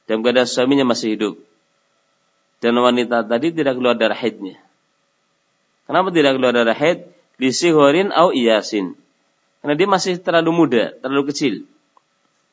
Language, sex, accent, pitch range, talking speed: Indonesian, male, native, 110-145 Hz, 115 wpm